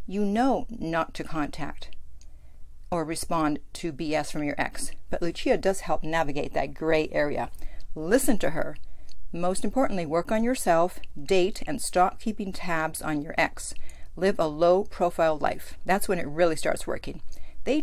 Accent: American